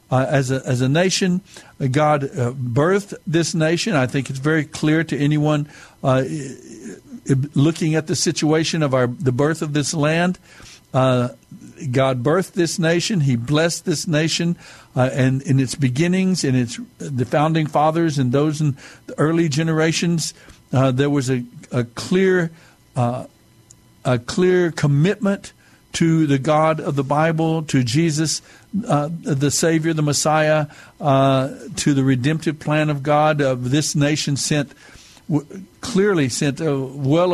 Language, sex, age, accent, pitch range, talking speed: English, male, 60-79, American, 140-160 Hz, 150 wpm